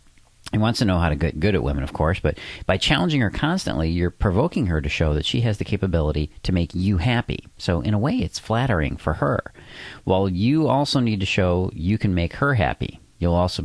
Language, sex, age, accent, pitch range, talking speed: English, male, 40-59, American, 75-105 Hz, 230 wpm